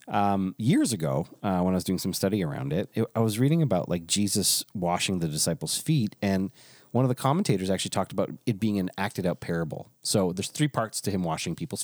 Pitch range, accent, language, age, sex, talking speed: 90-130 Hz, American, English, 30-49, male, 230 wpm